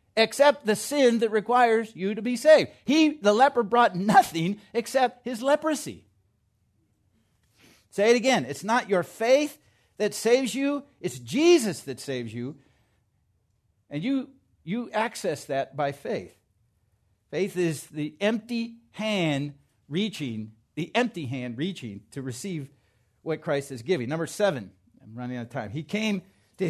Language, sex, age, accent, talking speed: English, male, 50-69, American, 145 wpm